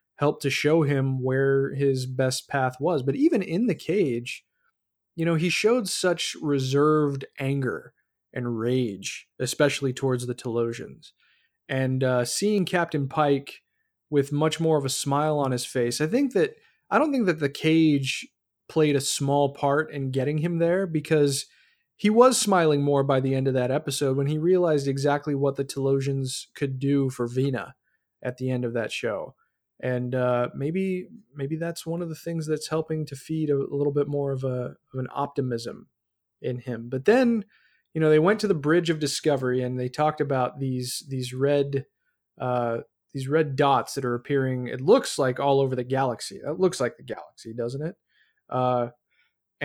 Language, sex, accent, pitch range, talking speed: English, male, American, 130-155 Hz, 185 wpm